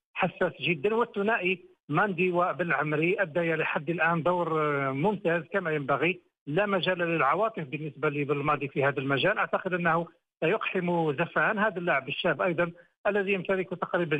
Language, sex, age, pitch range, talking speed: Arabic, male, 50-69, 155-190 Hz, 130 wpm